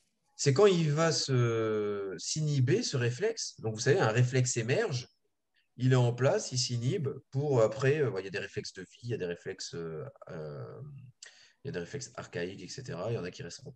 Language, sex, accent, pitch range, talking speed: French, male, French, 115-155 Hz, 210 wpm